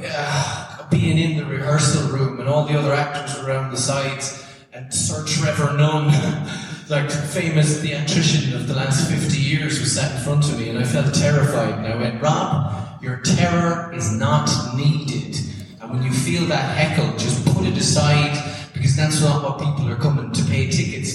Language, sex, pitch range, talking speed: English, male, 130-155 Hz, 185 wpm